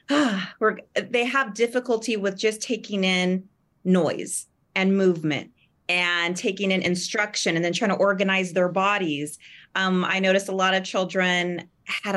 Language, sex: English, female